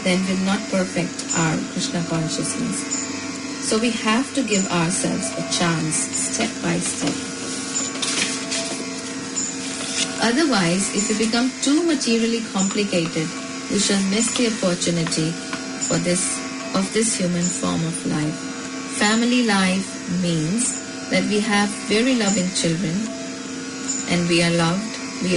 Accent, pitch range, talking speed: Indian, 180-245 Hz, 125 wpm